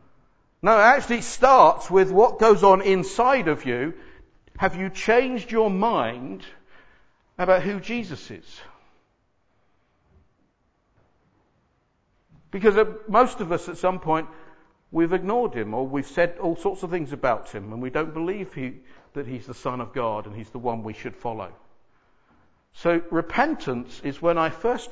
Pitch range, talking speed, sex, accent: 140-195 Hz, 150 wpm, male, British